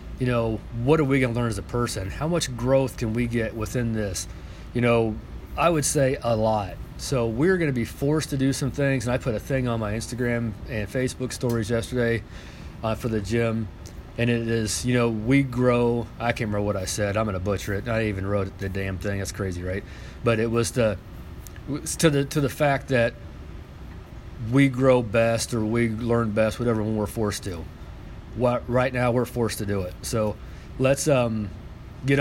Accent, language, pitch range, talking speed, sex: American, English, 105-125 Hz, 210 wpm, male